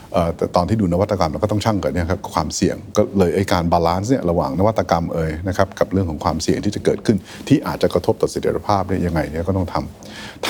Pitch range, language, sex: 90-110 Hz, Thai, male